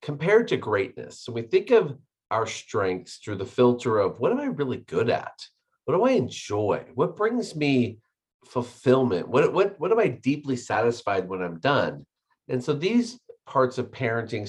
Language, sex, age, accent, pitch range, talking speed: English, male, 40-59, American, 110-140 Hz, 180 wpm